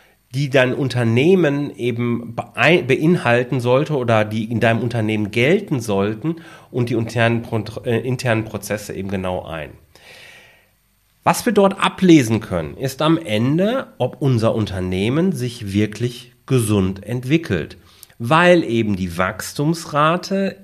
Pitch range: 100-145 Hz